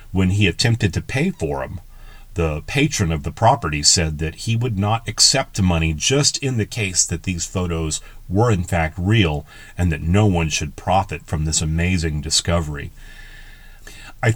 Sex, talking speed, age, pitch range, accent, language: male, 170 wpm, 40-59, 85-115 Hz, American, English